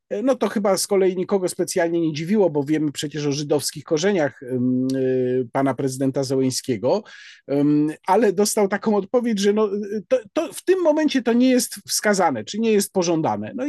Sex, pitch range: male, 150-215 Hz